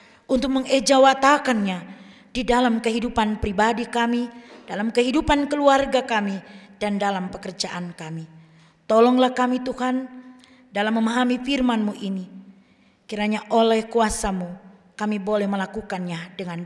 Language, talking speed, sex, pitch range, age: Indonesian, 105 wpm, female, 200-255 Hz, 20-39